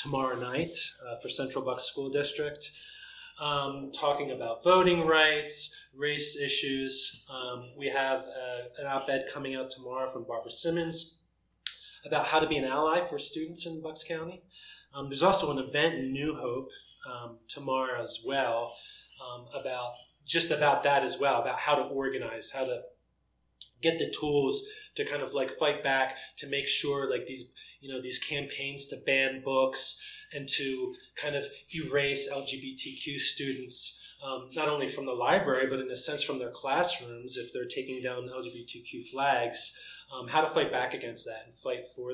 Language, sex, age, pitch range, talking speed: English, male, 20-39, 135-160 Hz, 170 wpm